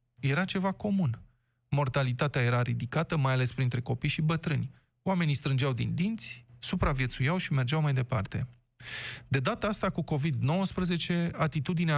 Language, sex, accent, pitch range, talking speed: Romanian, male, native, 125-160 Hz, 135 wpm